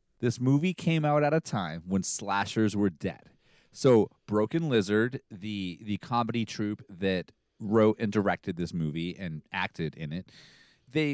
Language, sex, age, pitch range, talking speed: English, male, 30-49, 95-140 Hz, 155 wpm